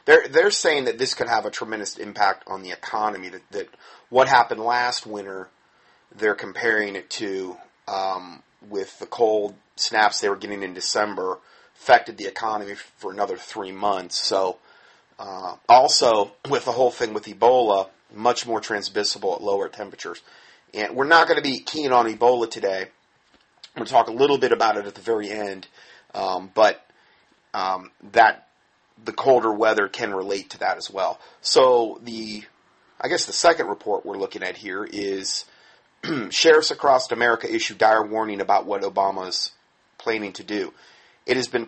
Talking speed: 170 wpm